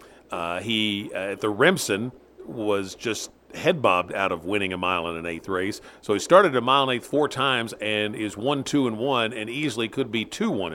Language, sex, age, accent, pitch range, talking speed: English, male, 50-69, American, 105-135 Hz, 220 wpm